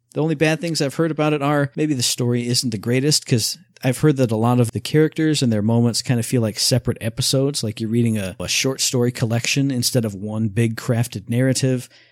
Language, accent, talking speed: English, American, 235 wpm